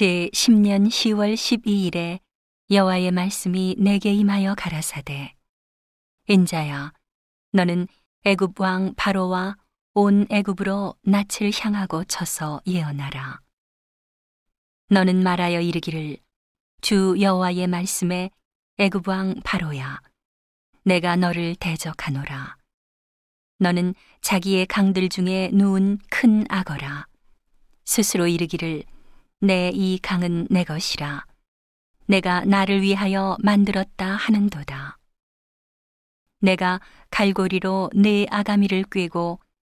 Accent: native